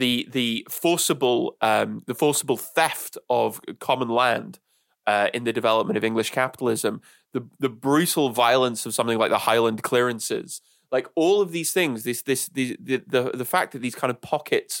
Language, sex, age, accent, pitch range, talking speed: English, male, 20-39, British, 125-170 Hz, 175 wpm